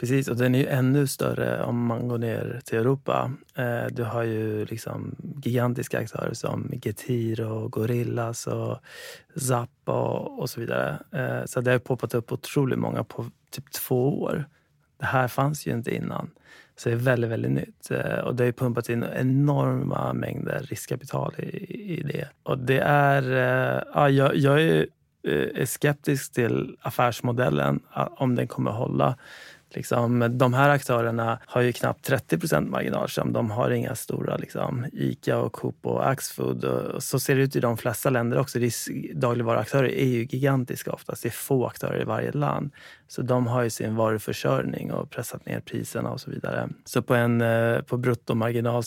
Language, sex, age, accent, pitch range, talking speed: Swedish, male, 30-49, native, 115-135 Hz, 170 wpm